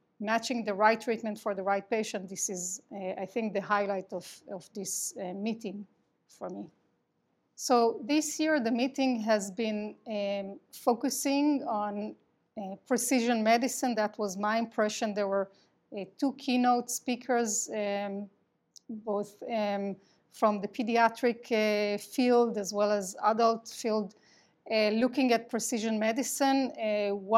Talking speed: 140 wpm